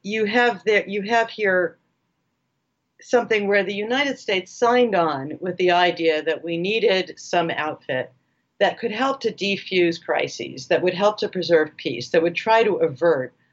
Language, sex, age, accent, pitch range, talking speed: English, female, 50-69, American, 155-200 Hz, 170 wpm